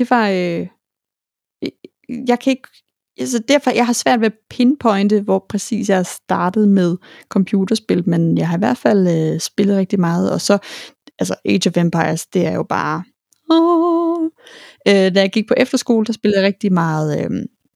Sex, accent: female, native